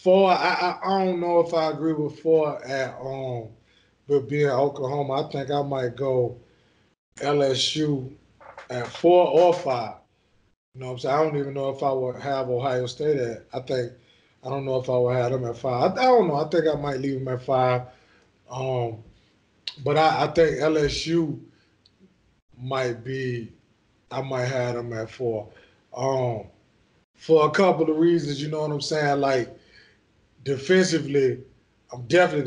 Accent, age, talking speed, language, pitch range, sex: American, 20-39, 175 wpm, English, 120-145 Hz, male